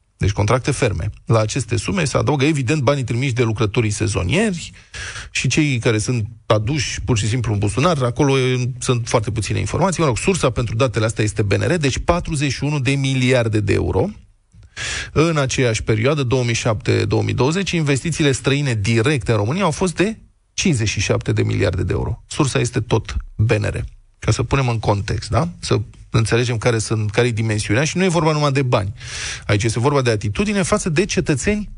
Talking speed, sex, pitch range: 175 wpm, male, 110-150 Hz